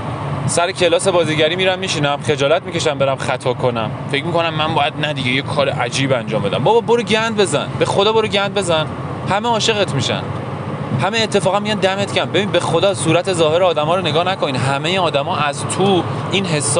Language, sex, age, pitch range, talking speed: Persian, male, 20-39, 135-170 Hz, 190 wpm